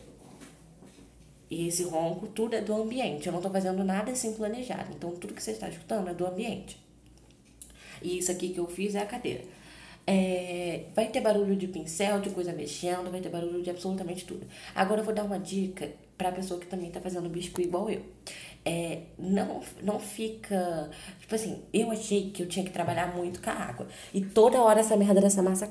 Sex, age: female, 10-29